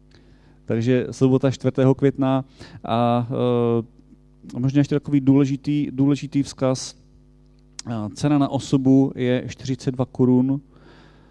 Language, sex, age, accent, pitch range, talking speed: Czech, male, 30-49, native, 110-135 Hz, 90 wpm